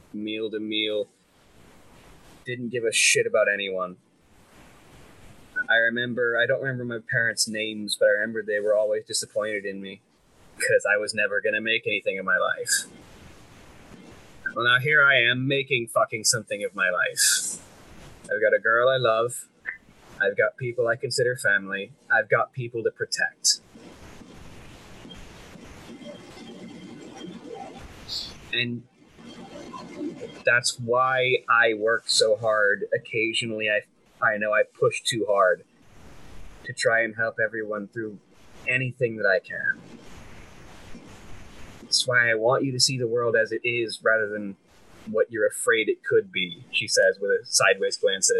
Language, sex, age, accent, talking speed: English, male, 20-39, American, 145 wpm